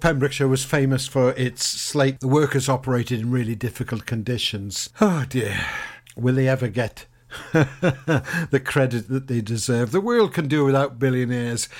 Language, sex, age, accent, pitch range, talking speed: English, male, 60-79, British, 115-135 Hz, 155 wpm